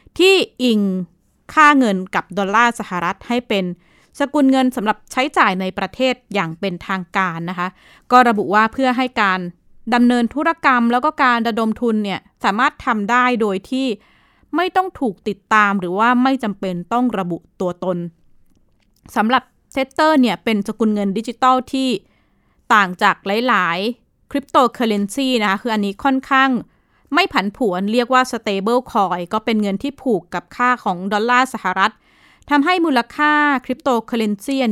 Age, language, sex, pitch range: 20-39, Thai, female, 195-255 Hz